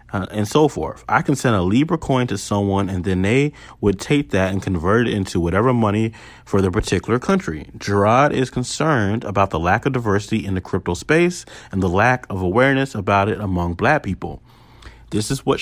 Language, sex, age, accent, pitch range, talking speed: English, male, 30-49, American, 110-155 Hz, 205 wpm